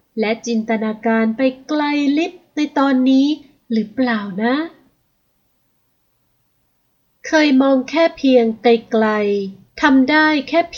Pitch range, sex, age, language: 210-270 Hz, female, 30-49, Thai